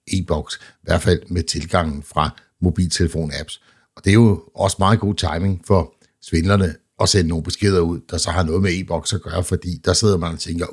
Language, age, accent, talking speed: Danish, 60-79, native, 215 wpm